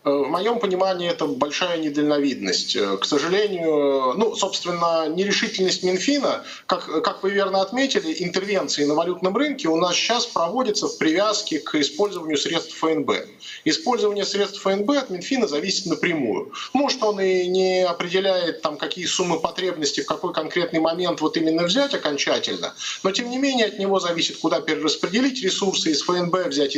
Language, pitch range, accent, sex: Russian, 145-190 Hz, native, male